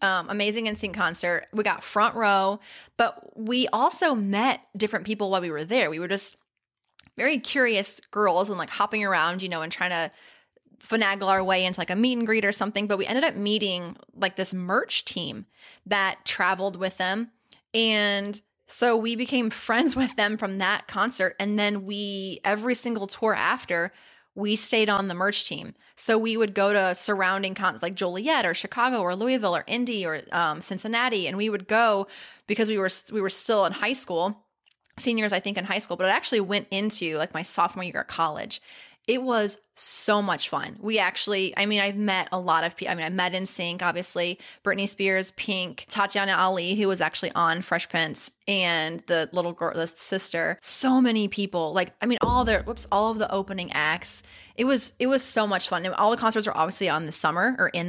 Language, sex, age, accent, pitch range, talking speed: English, female, 20-39, American, 185-220 Hz, 205 wpm